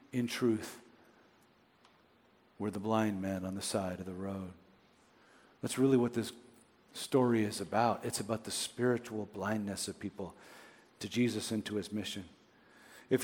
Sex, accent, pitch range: male, American, 120-155 Hz